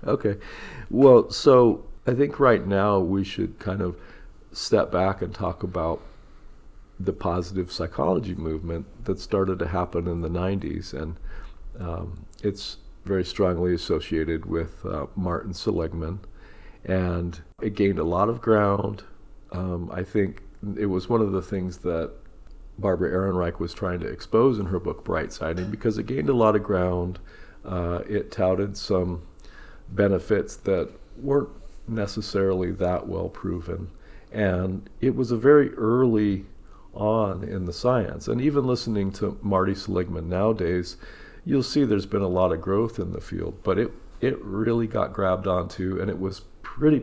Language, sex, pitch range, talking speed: English, male, 90-105 Hz, 155 wpm